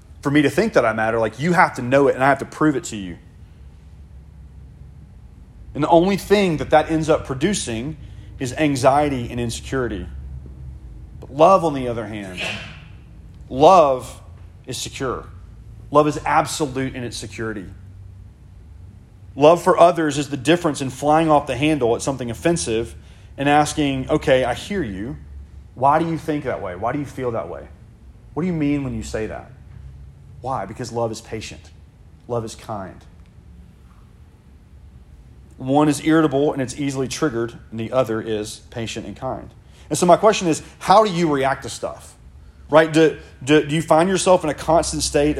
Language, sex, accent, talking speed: English, male, American, 175 wpm